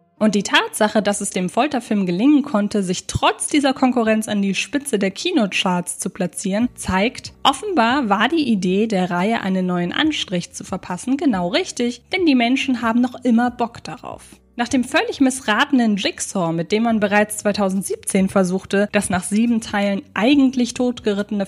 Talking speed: 165 wpm